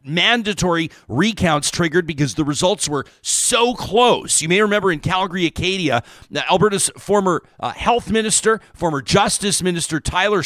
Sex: male